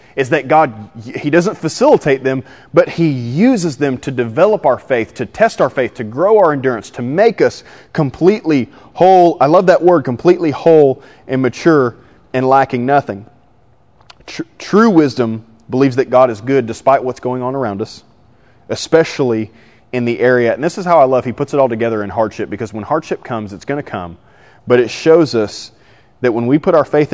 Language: English